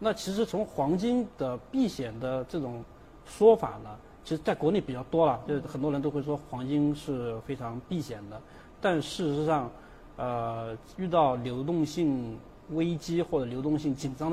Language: Chinese